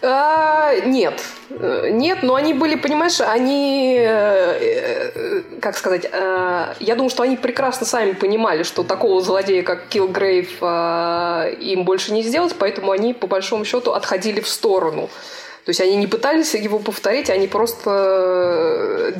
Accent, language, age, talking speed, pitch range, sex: native, Russian, 20-39, 145 wpm, 195-300 Hz, female